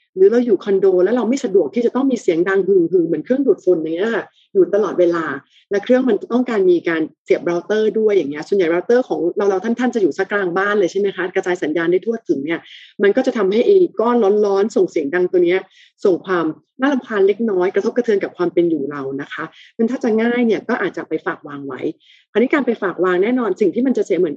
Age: 30-49